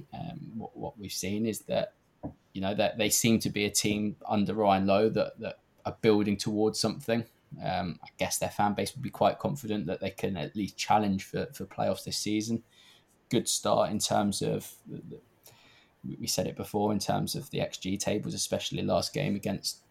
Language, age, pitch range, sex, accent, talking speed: English, 10-29, 105-115 Hz, male, British, 200 wpm